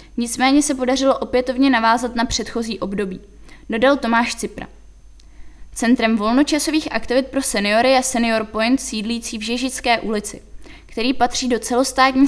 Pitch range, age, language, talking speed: 225-260 Hz, 20-39, Czech, 130 wpm